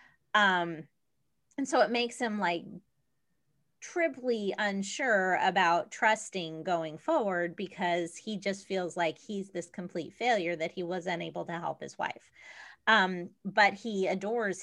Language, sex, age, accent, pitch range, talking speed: English, female, 30-49, American, 180-245 Hz, 140 wpm